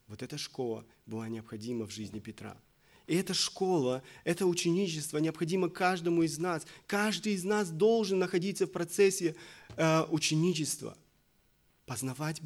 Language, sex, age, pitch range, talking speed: Russian, male, 30-49, 130-175 Hz, 125 wpm